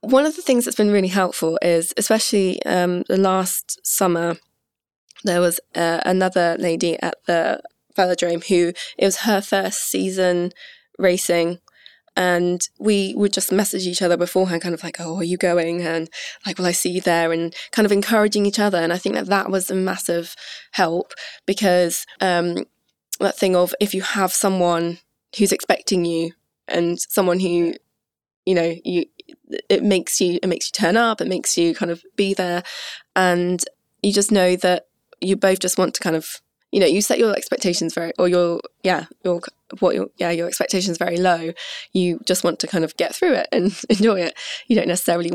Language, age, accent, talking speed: English, 20-39, British, 190 wpm